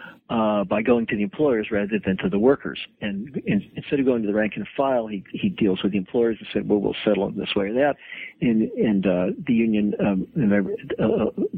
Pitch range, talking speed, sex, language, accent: 100-125 Hz, 240 wpm, male, English, American